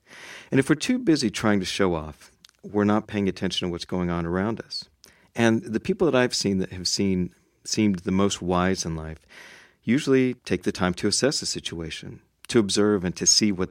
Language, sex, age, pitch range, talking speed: English, male, 40-59, 90-115 Hz, 205 wpm